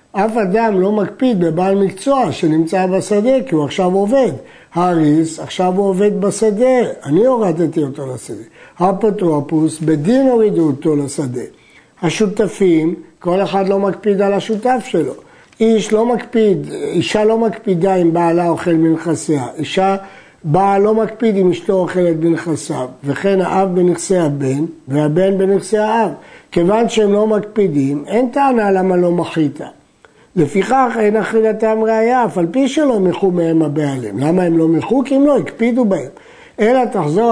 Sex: male